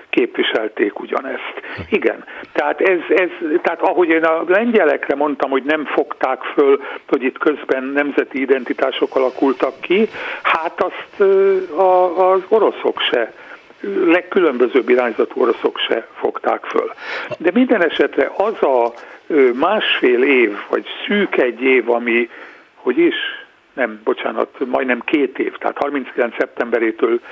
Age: 60-79